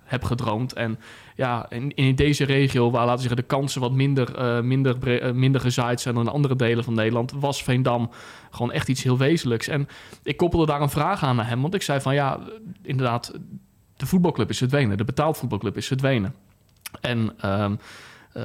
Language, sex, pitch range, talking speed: Dutch, male, 115-145 Hz, 210 wpm